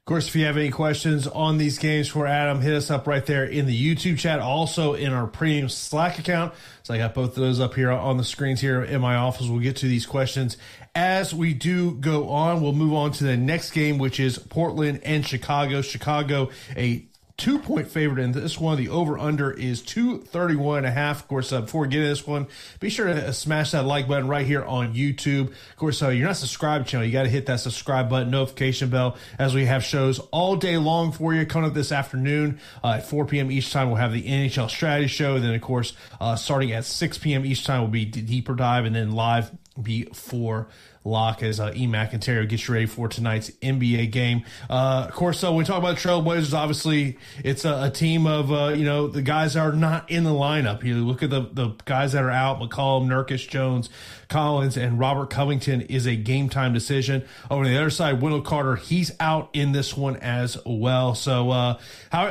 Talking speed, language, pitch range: 225 wpm, English, 125-150 Hz